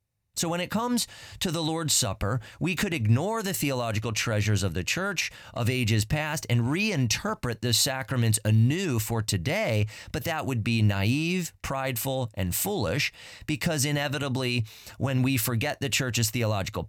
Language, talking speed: English, 155 wpm